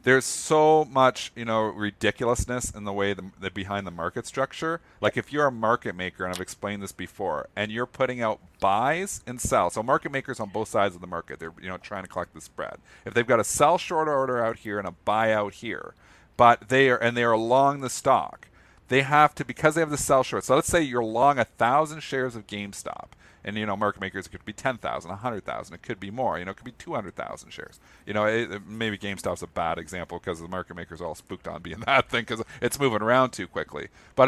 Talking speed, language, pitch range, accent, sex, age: 240 wpm, English, 100-135 Hz, American, male, 40-59